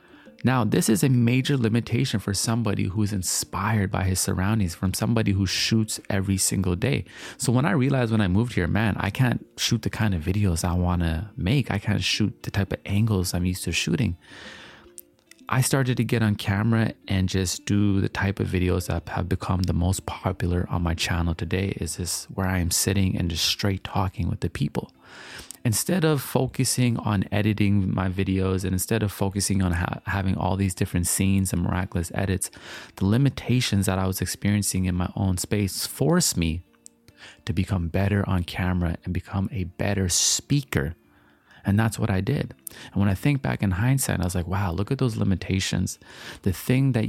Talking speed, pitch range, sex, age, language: 195 wpm, 90-110 Hz, male, 30-49, English